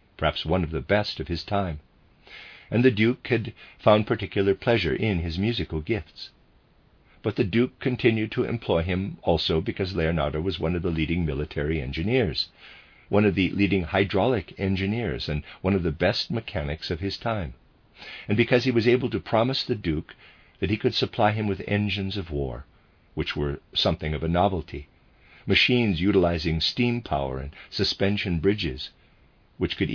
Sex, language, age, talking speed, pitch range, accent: male, English, 50-69, 170 wpm, 80-110 Hz, American